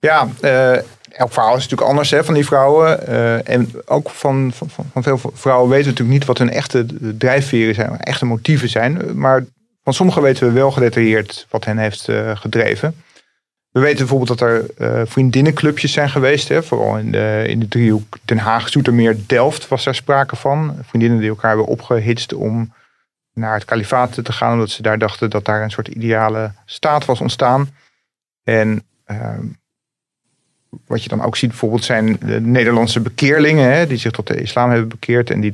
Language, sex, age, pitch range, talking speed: Dutch, male, 40-59, 110-135 Hz, 190 wpm